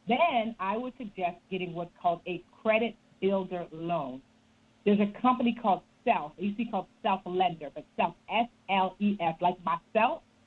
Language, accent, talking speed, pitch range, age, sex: English, American, 160 wpm, 180-235 Hz, 40-59, female